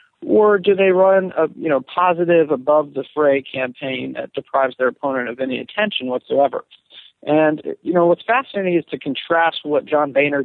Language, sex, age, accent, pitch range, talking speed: English, male, 40-59, American, 130-165 Hz, 165 wpm